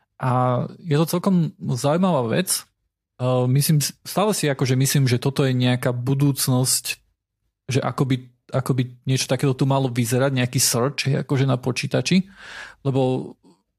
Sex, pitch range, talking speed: male, 120-140 Hz, 130 wpm